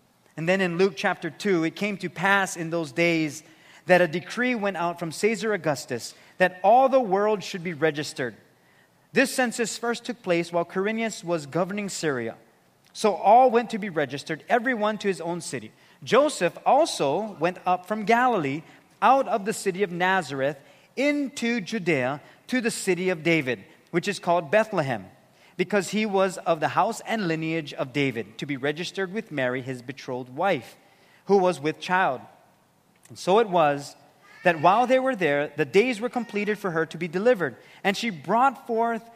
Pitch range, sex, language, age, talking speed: 155-210 Hz, male, English, 30-49, 180 wpm